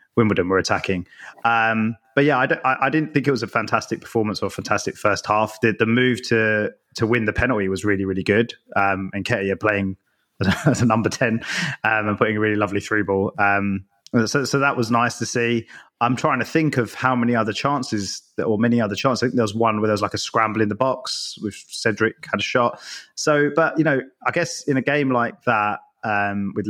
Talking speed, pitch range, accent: 240 wpm, 100-125 Hz, British